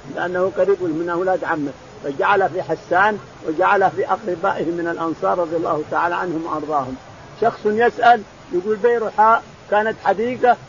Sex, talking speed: male, 135 wpm